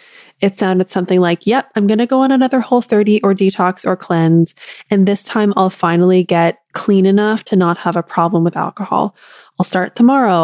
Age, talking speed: 20-39, 195 wpm